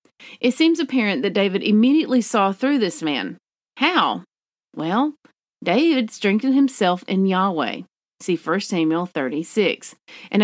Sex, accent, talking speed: female, American, 125 wpm